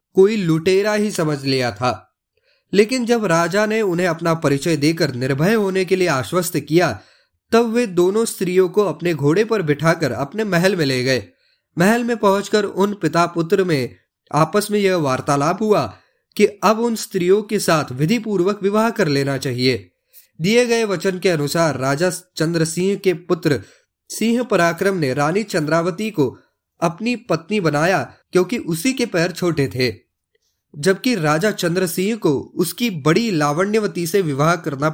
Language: Hindi